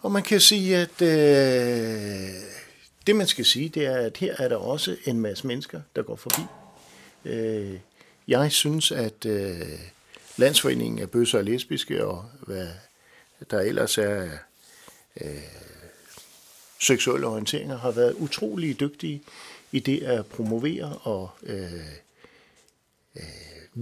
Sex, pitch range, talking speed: male, 100-145 Hz, 130 wpm